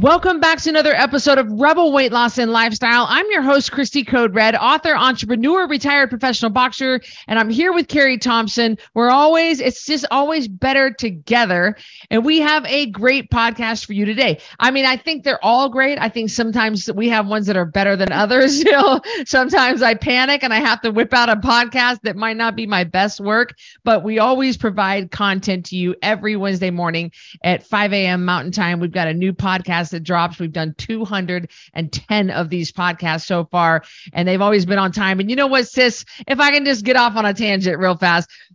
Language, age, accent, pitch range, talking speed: English, 40-59, American, 200-265 Hz, 205 wpm